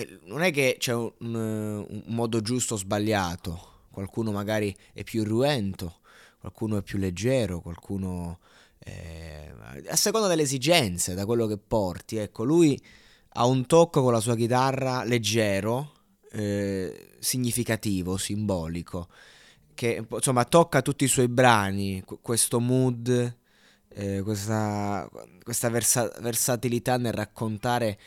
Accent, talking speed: native, 120 wpm